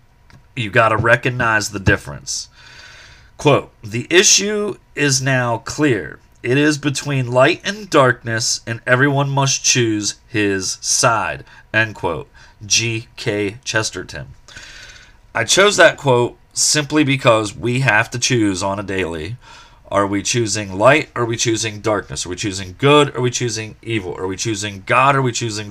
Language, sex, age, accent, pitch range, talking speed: English, male, 30-49, American, 105-135 Hz, 155 wpm